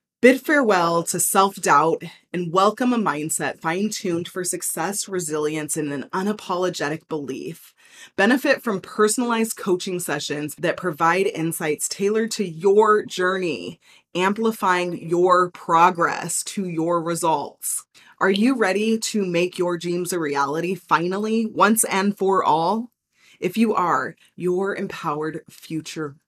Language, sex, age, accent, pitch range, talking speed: English, female, 20-39, American, 160-200 Hz, 125 wpm